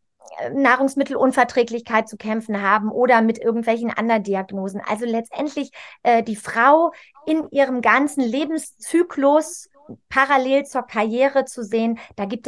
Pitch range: 215-265 Hz